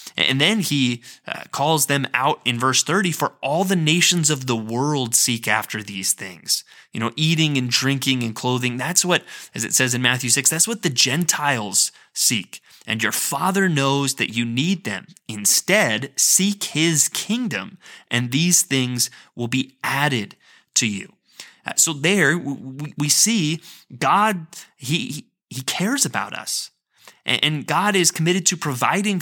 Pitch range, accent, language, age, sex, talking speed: 125-175 Hz, American, English, 20-39, male, 155 wpm